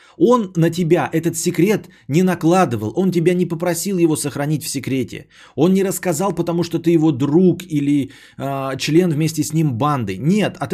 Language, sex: Bulgarian, male